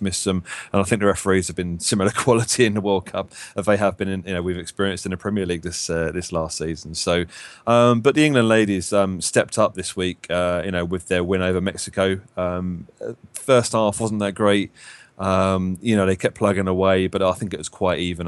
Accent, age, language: British, 30-49, English